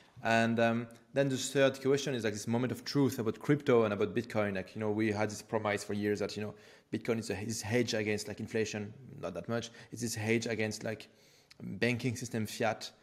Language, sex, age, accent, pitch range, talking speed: English, male, 30-49, French, 105-135 Hz, 220 wpm